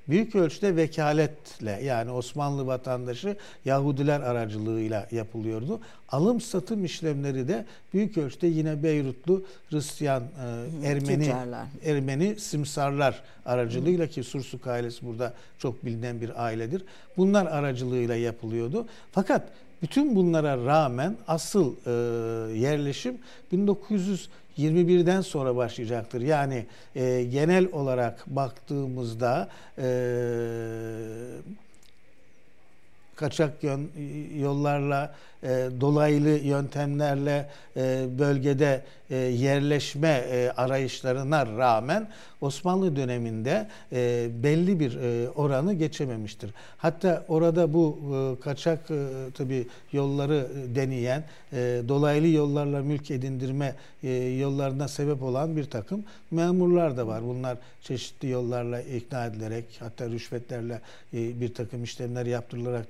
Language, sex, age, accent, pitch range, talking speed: Turkish, male, 60-79, native, 125-155 Hz, 90 wpm